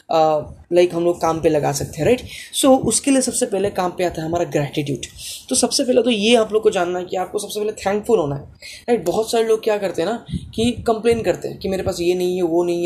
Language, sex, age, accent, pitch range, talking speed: Hindi, female, 20-39, native, 175-220 Hz, 280 wpm